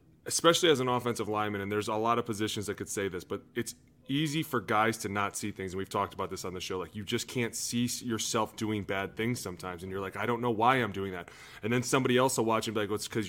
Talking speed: 290 wpm